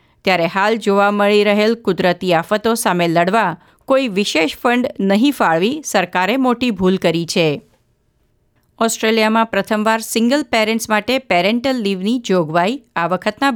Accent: native